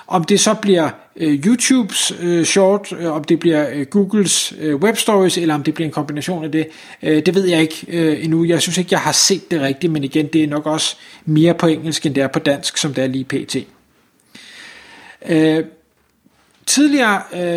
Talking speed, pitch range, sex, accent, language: 205 wpm, 155-190 Hz, male, native, Danish